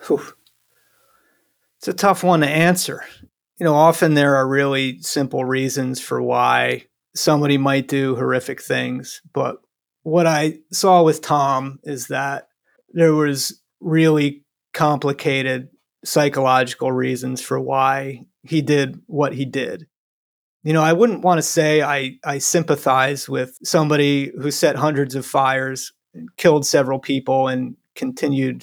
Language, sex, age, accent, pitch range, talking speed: English, male, 30-49, American, 135-155 Hz, 135 wpm